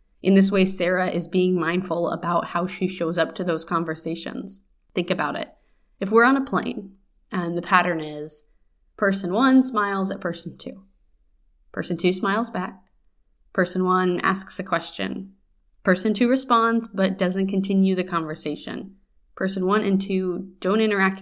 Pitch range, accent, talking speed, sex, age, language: 165-200 Hz, American, 160 wpm, female, 20-39, English